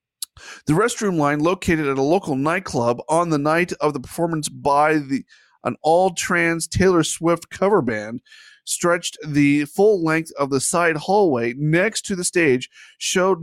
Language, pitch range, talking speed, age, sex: English, 135-180 Hz, 155 wpm, 30-49, male